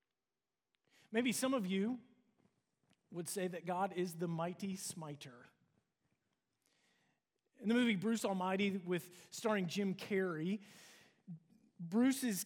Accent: American